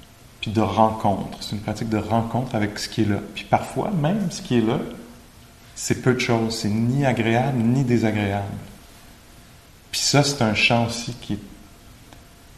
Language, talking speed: English, 170 wpm